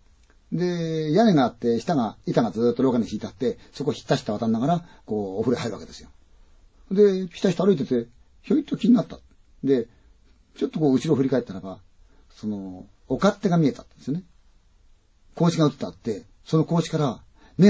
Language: Chinese